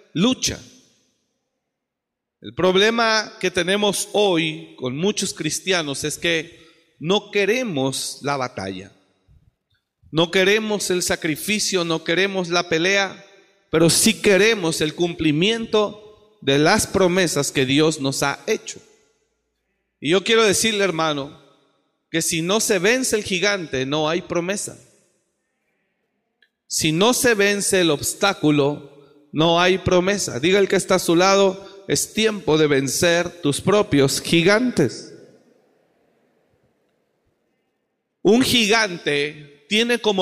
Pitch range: 160-210 Hz